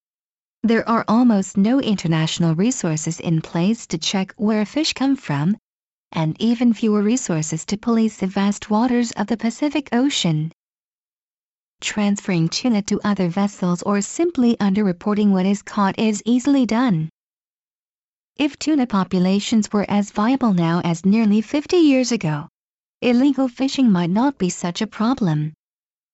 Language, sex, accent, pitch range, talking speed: English, female, American, 185-245 Hz, 140 wpm